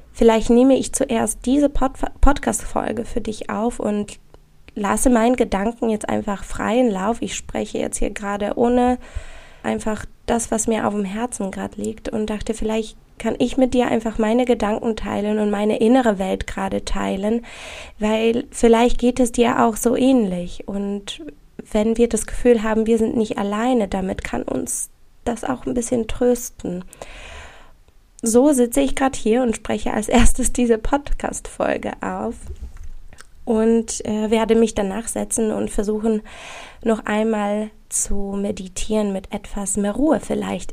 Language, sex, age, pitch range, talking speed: German, female, 20-39, 205-240 Hz, 155 wpm